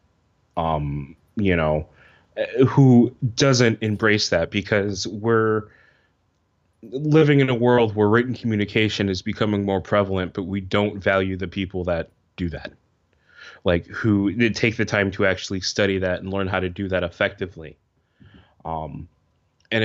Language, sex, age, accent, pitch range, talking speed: English, male, 20-39, American, 90-115 Hz, 140 wpm